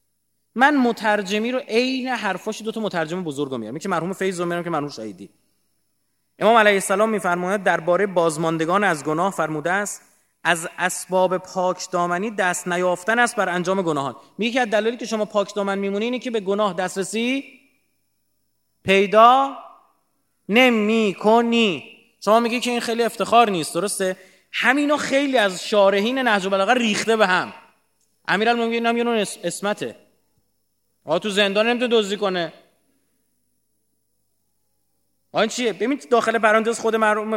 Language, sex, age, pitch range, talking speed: Persian, male, 30-49, 180-245 Hz, 140 wpm